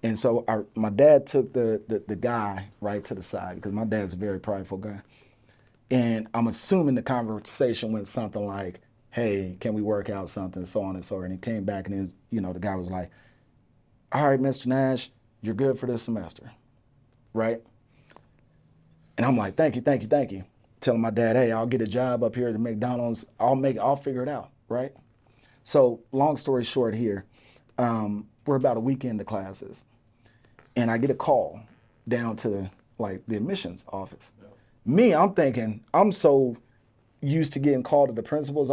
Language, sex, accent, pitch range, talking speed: English, male, American, 110-130 Hz, 195 wpm